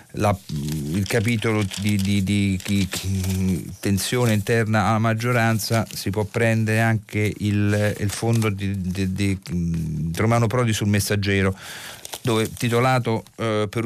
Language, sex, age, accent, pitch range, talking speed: Italian, male, 40-59, native, 105-125 Hz, 125 wpm